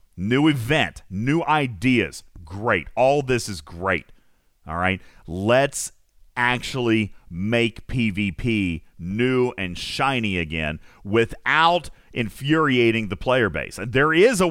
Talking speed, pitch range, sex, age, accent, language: 110 wpm, 90-140 Hz, male, 40-59, American, English